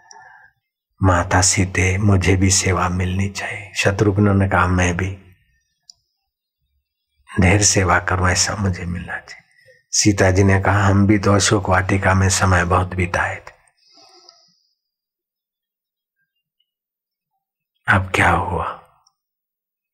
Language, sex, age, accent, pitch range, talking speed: Hindi, male, 60-79, native, 90-105 Hz, 110 wpm